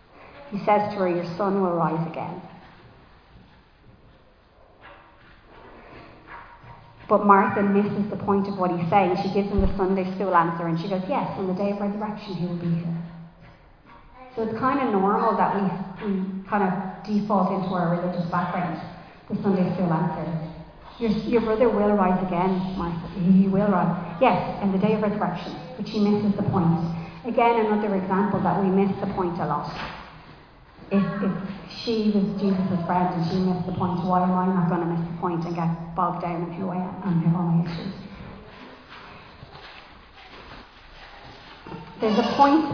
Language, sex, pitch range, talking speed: English, female, 180-215 Hz, 170 wpm